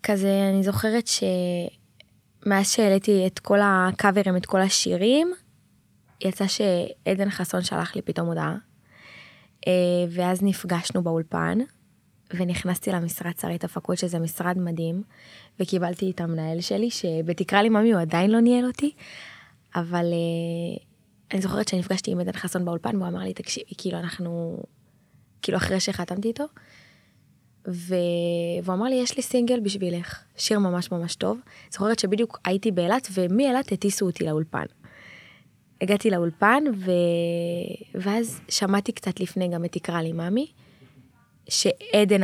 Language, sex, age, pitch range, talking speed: Hebrew, female, 20-39, 175-210 Hz, 130 wpm